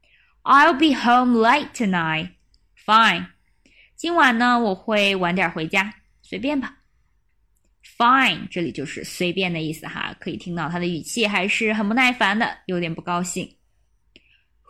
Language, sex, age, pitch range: Chinese, female, 20-39, 185-285 Hz